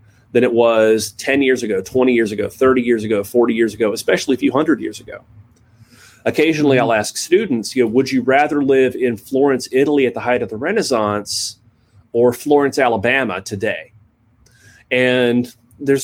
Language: English